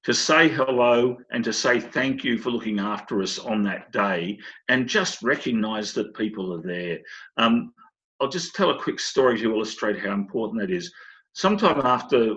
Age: 50-69